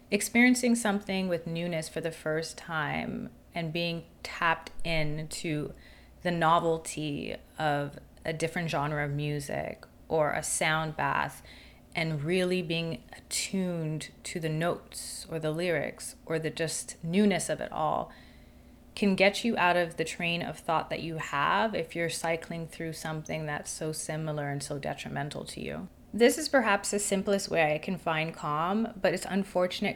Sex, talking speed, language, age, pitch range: female, 160 wpm, English, 30-49, 160-200 Hz